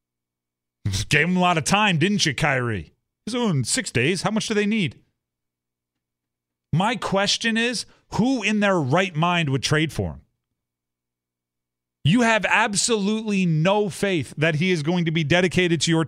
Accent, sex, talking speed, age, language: American, male, 170 wpm, 30-49, English